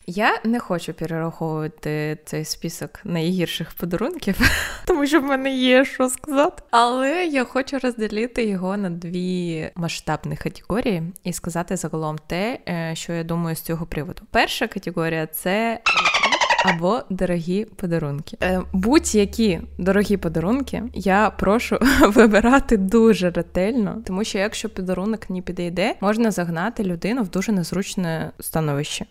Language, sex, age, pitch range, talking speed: Ukrainian, female, 20-39, 175-225 Hz, 130 wpm